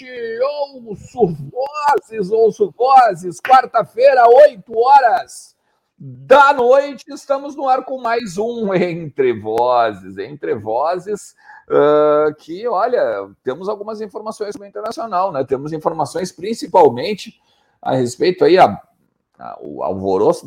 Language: Portuguese